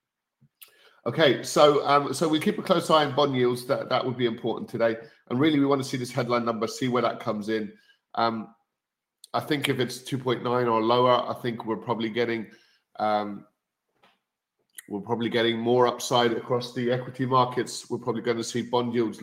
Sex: male